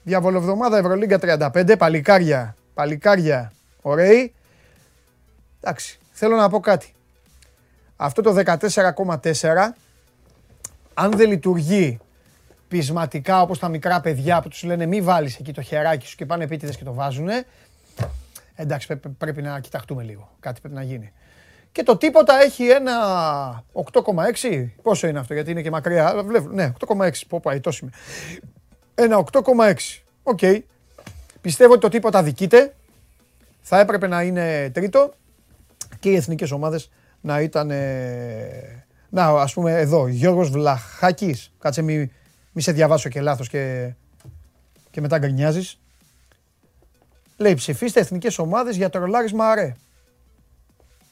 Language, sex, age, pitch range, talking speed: Greek, male, 30-49, 135-205 Hz, 130 wpm